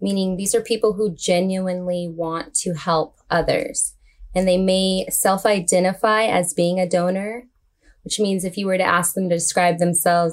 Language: English